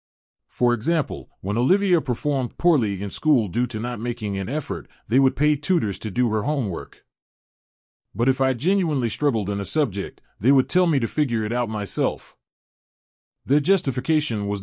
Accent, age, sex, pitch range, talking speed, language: American, 30-49, male, 105-140 Hz, 170 wpm, English